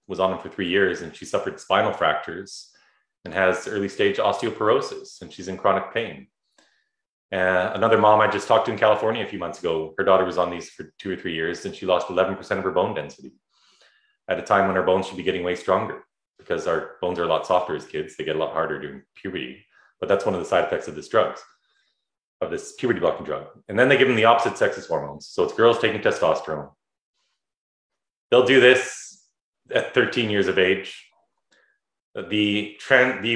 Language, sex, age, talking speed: English, male, 30-49, 210 wpm